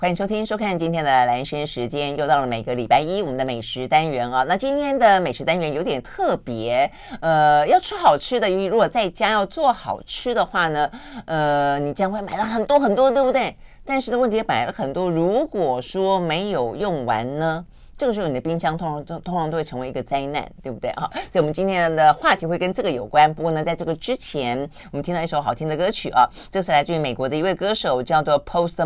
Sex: female